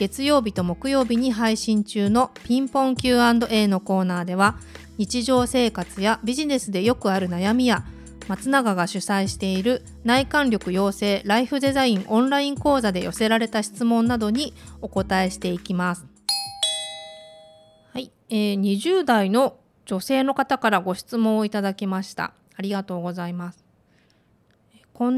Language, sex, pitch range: Japanese, female, 195-245 Hz